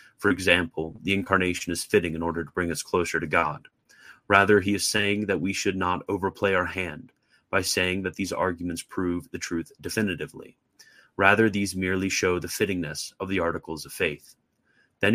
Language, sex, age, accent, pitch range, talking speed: English, male, 30-49, American, 90-105 Hz, 180 wpm